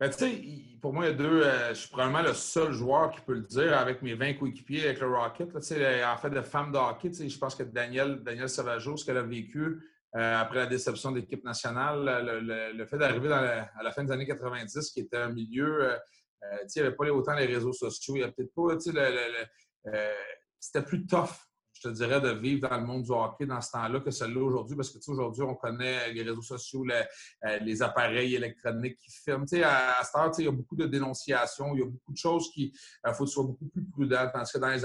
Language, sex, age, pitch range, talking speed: French, male, 30-49, 120-145 Hz, 270 wpm